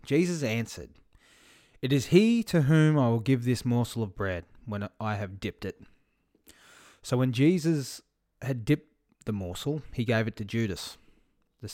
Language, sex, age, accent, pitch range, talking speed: English, male, 20-39, Australian, 95-120 Hz, 165 wpm